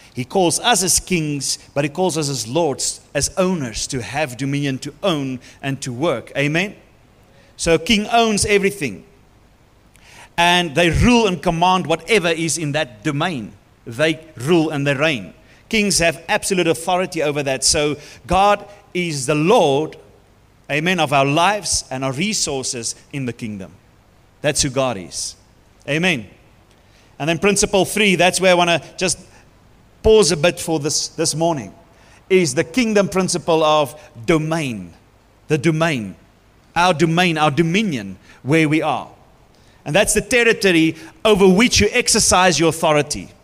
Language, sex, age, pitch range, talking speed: English, male, 40-59, 130-185 Hz, 150 wpm